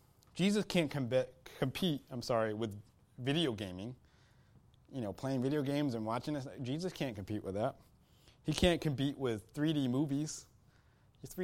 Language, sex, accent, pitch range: English, male, American, 110-155 Hz